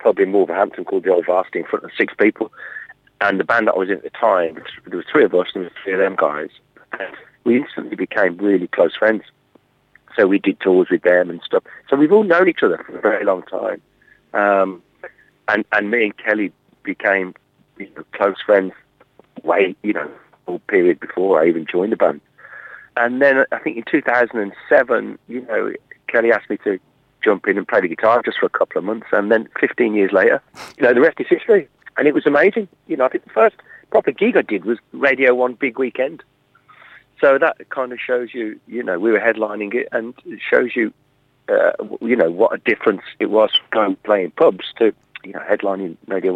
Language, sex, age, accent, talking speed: English, male, 40-59, British, 220 wpm